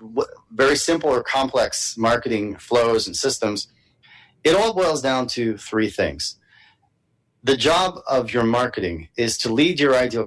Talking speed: 145 wpm